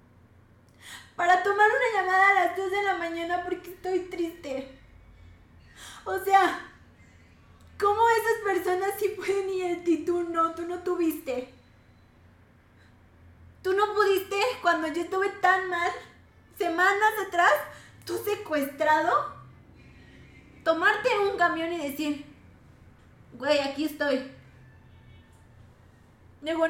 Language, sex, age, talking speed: Spanish, female, 20-39, 110 wpm